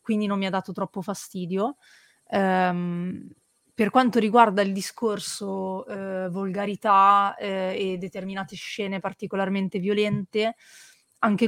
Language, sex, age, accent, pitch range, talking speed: Italian, female, 20-39, native, 190-215 Hz, 100 wpm